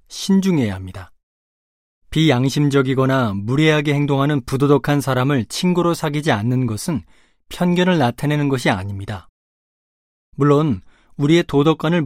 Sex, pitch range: male, 110-155 Hz